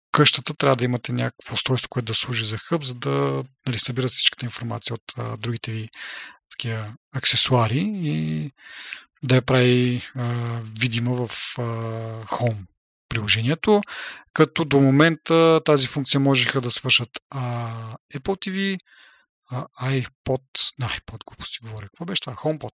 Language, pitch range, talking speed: Bulgarian, 115-140 Hz, 125 wpm